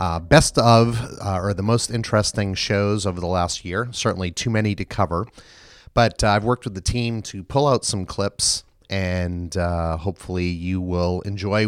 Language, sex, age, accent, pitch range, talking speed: English, male, 30-49, American, 90-110 Hz, 185 wpm